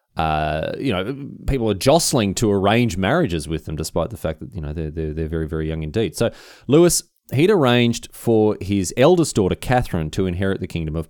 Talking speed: 205 wpm